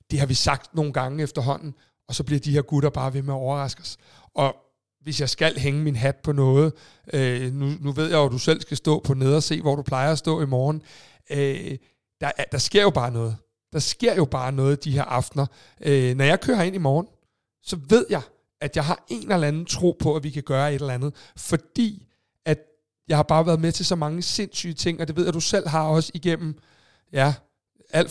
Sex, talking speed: male, 230 wpm